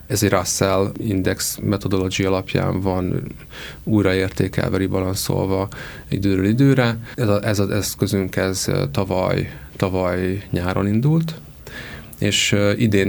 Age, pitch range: 30-49, 95-105 Hz